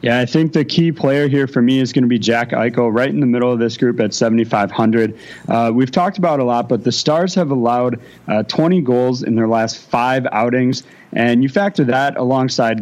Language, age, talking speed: English, 30-49, 225 wpm